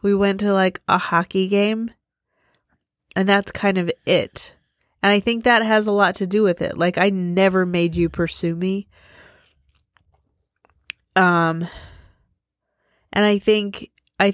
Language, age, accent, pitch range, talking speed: English, 30-49, American, 175-215 Hz, 145 wpm